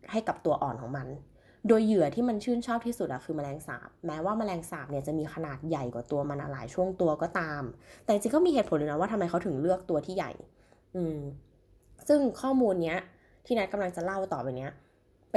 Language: Thai